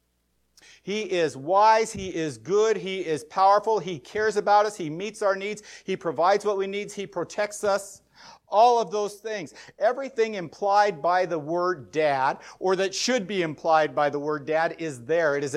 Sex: male